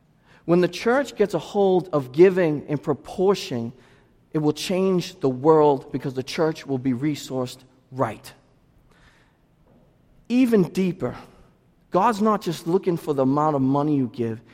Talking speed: 145 wpm